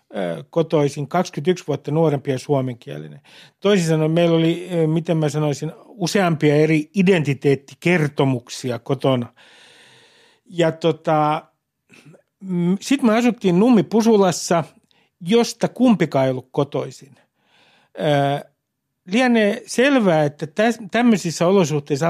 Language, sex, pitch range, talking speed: Finnish, male, 145-195 Hz, 85 wpm